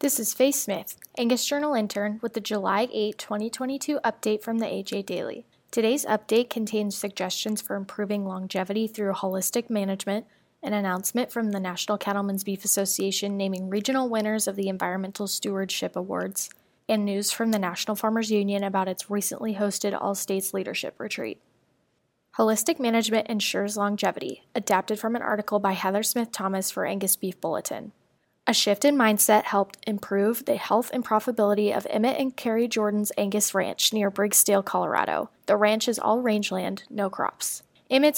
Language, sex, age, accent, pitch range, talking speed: English, female, 10-29, American, 195-225 Hz, 155 wpm